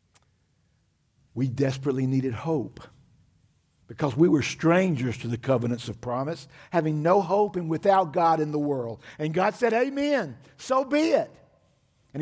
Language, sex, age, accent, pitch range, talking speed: English, male, 50-69, American, 105-140 Hz, 145 wpm